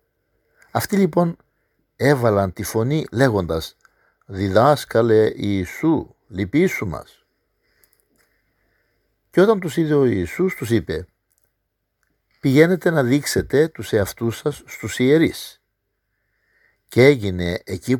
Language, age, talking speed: Greek, 50-69, 95 wpm